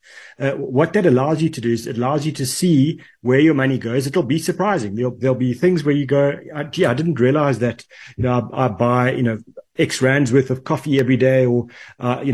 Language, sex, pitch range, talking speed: English, male, 125-150 Hz, 240 wpm